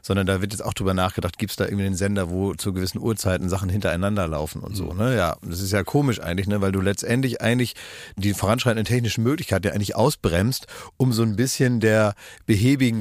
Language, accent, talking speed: German, German, 215 wpm